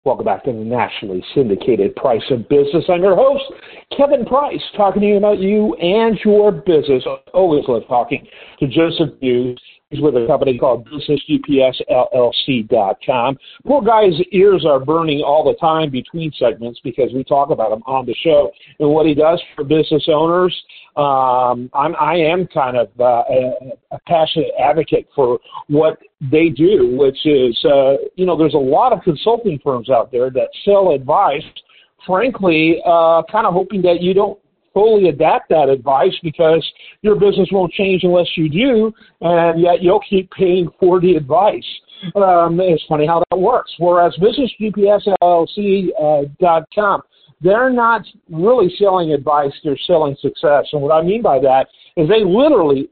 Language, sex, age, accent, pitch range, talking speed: English, male, 50-69, American, 150-205 Hz, 160 wpm